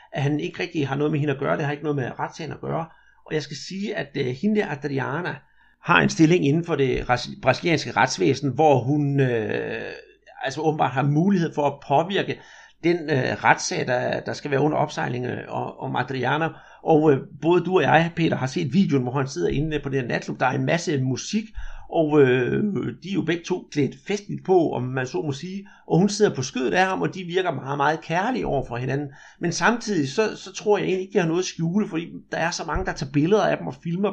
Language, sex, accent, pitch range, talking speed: Danish, male, native, 140-185 Hz, 235 wpm